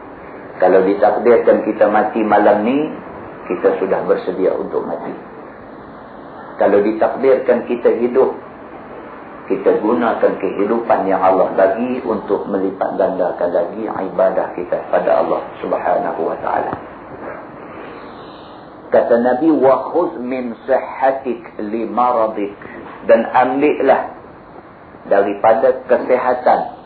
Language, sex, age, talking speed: Malay, male, 50-69, 90 wpm